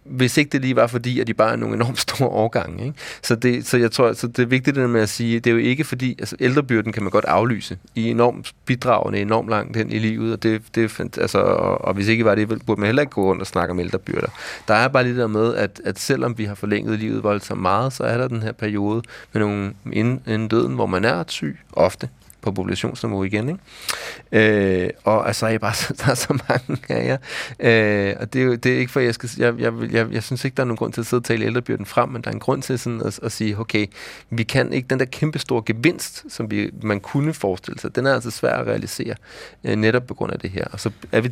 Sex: male